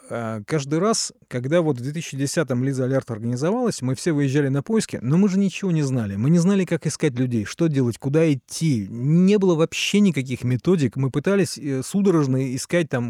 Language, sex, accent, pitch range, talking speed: Russian, male, native, 120-165 Hz, 175 wpm